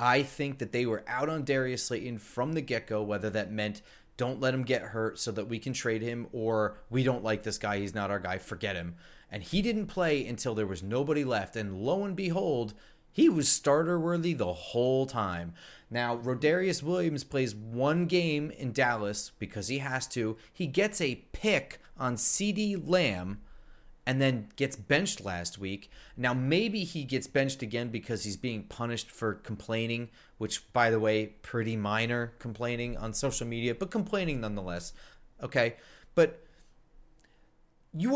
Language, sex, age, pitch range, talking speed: English, male, 30-49, 110-150 Hz, 175 wpm